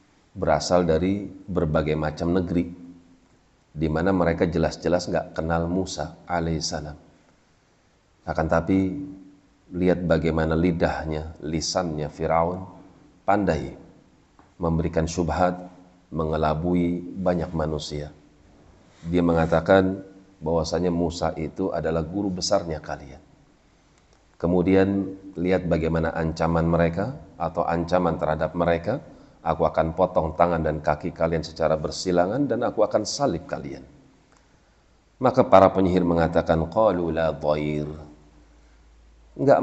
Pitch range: 80-90 Hz